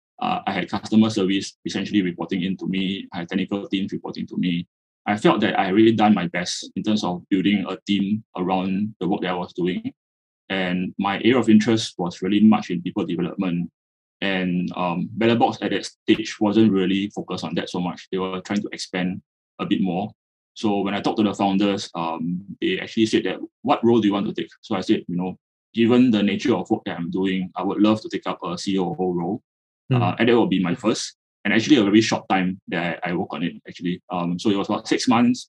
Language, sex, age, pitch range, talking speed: English, male, 20-39, 90-105 Hz, 235 wpm